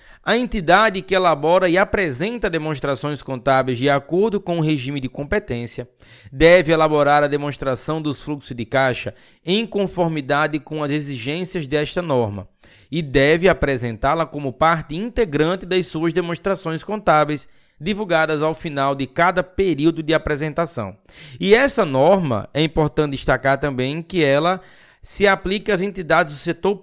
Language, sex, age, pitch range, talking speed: Portuguese, male, 20-39, 135-180 Hz, 140 wpm